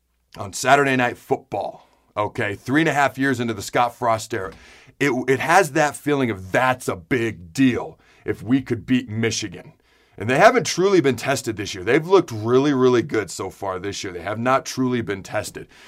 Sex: male